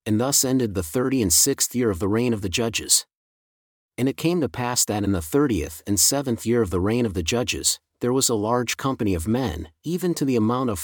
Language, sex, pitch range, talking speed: English, male, 105-130 Hz, 235 wpm